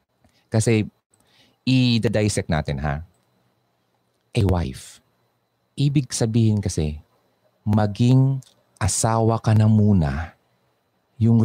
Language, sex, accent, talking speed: Filipino, male, native, 85 wpm